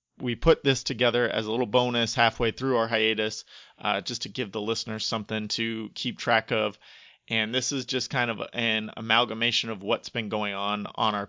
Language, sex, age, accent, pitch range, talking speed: English, male, 30-49, American, 110-125 Hz, 200 wpm